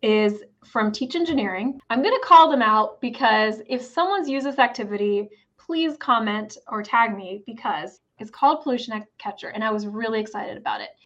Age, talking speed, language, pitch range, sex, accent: 20-39, 180 wpm, English, 215-270 Hz, female, American